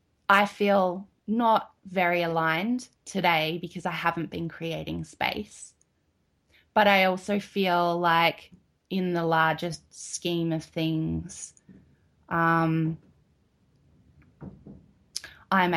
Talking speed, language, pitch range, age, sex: 95 wpm, English, 160-185 Hz, 20-39, female